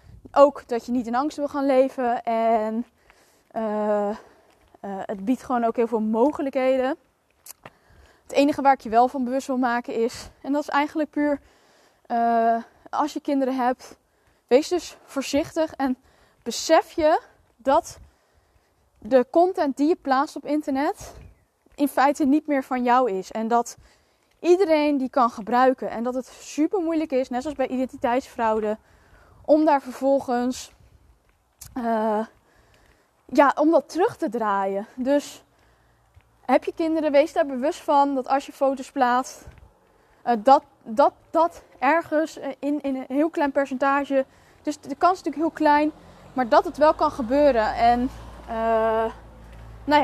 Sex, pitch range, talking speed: female, 245-295 Hz, 150 wpm